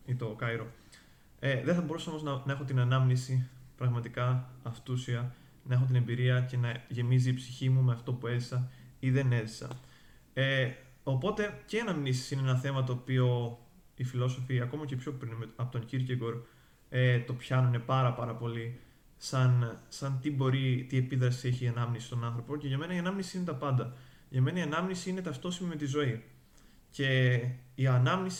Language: Greek